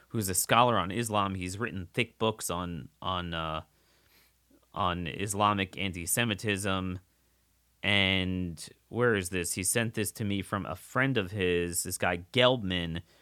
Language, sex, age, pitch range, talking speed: English, male, 30-49, 95-120 Hz, 145 wpm